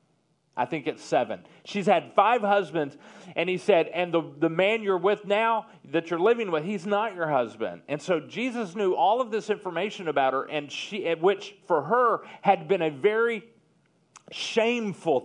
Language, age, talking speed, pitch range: English, 40-59, 180 wpm, 155-225 Hz